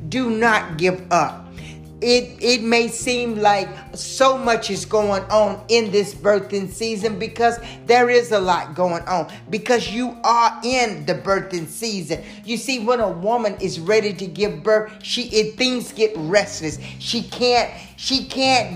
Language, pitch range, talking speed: English, 205-240 Hz, 165 wpm